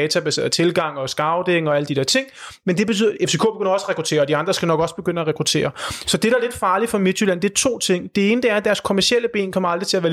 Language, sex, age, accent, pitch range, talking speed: Danish, male, 30-49, native, 160-205 Hz, 310 wpm